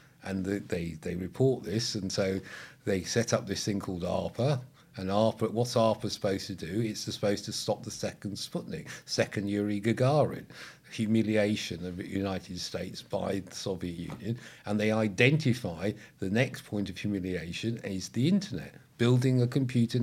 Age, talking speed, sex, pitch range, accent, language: 50-69, 160 wpm, male, 100-125 Hz, British, English